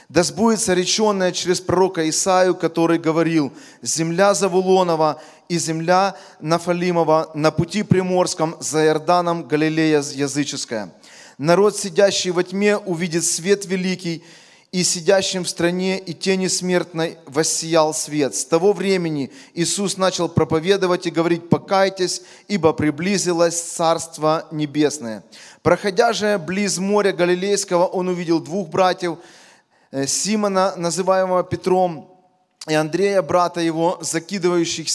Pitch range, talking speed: 160-185 Hz, 115 wpm